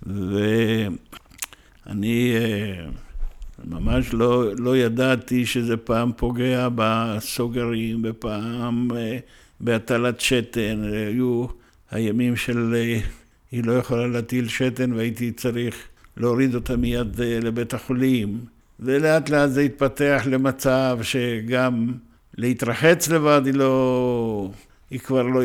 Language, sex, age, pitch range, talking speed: Hebrew, male, 60-79, 110-145 Hz, 105 wpm